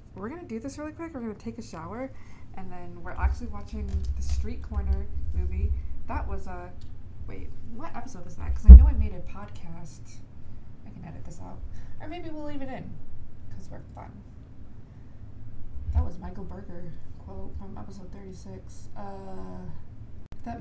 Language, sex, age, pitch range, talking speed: English, female, 20-39, 80-110 Hz, 180 wpm